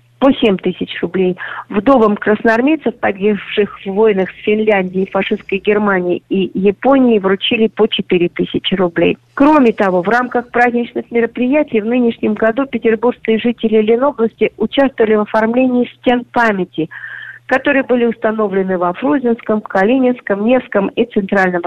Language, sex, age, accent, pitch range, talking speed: Russian, female, 40-59, native, 210-250 Hz, 125 wpm